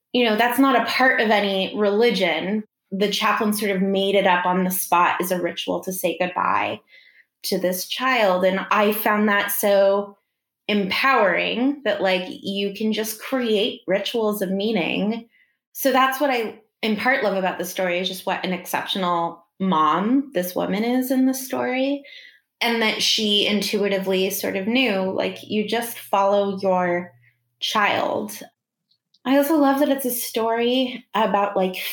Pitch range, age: 190-225 Hz, 20-39